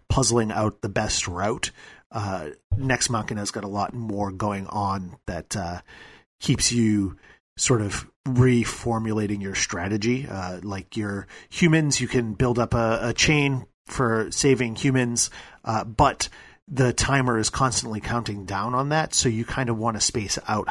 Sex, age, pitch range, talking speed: male, 40-59, 100-125 Hz, 160 wpm